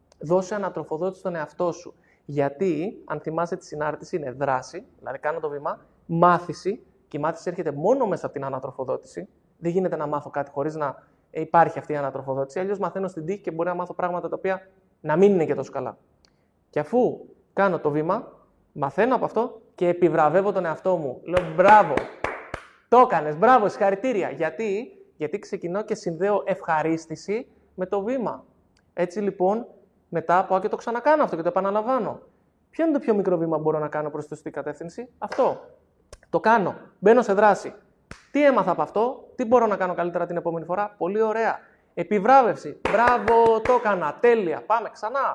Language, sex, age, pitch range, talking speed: Greek, male, 20-39, 160-215 Hz, 175 wpm